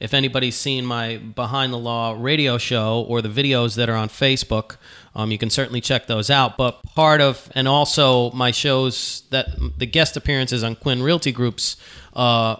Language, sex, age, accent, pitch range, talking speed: English, male, 30-49, American, 130-190 Hz, 185 wpm